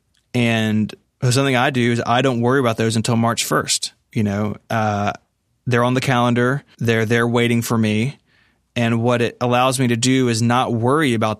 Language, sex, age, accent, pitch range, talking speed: English, male, 20-39, American, 110-125 Hz, 190 wpm